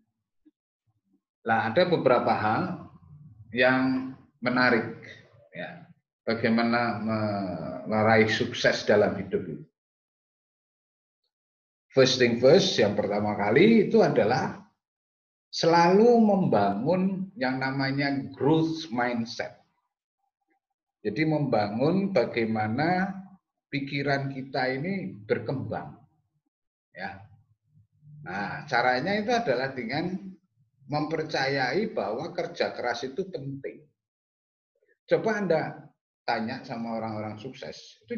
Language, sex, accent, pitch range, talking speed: Indonesian, male, native, 115-185 Hz, 80 wpm